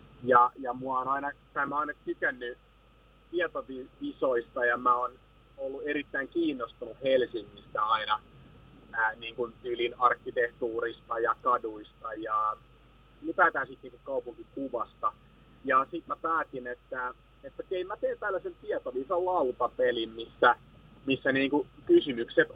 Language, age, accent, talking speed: Finnish, 30-49, native, 110 wpm